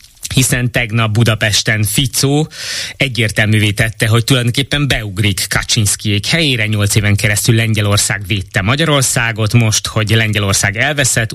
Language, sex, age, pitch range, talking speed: Hungarian, male, 20-39, 100-125 Hz, 110 wpm